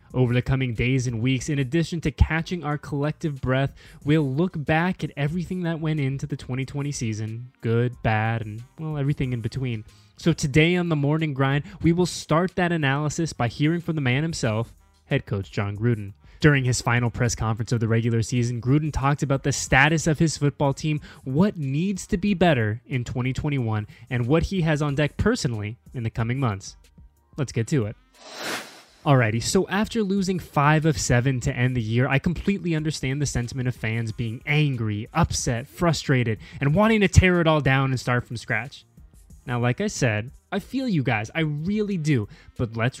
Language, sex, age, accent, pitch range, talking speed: English, male, 20-39, American, 115-155 Hz, 195 wpm